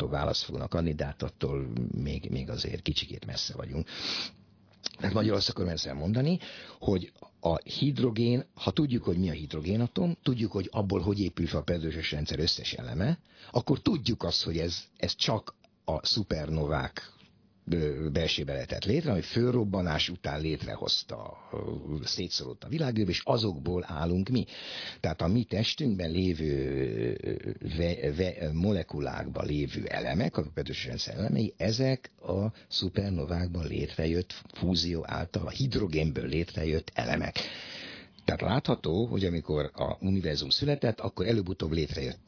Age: 60-79